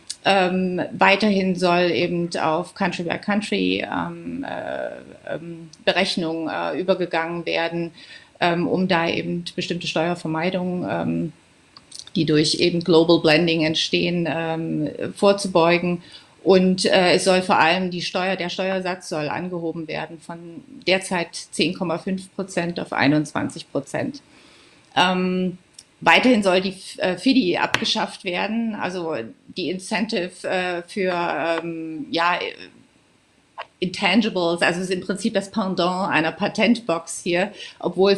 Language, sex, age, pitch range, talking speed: German, female, 30-49, 165-190 Hz, 110 wpm